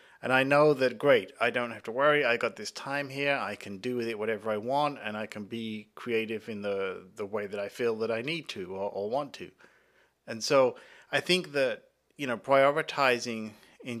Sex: male